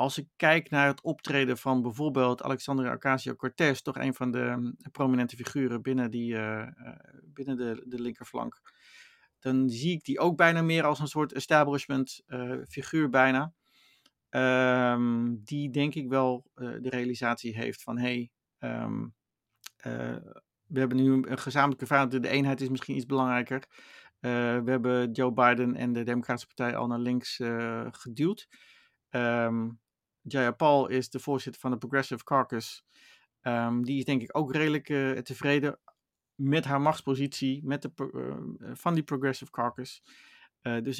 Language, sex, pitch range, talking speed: Dutch, male, 125-150 Hz, 160 wpm